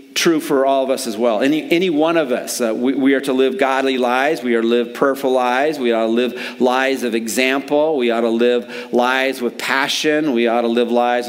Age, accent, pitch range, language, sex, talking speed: 40-59, American, 120-150 Hz, English, male, 240 wpm